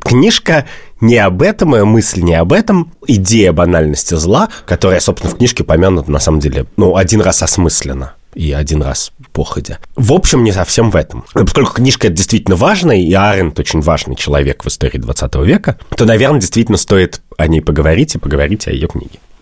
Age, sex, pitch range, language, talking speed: 30-49, male, 75-105 Hz, Russian, 185 wpm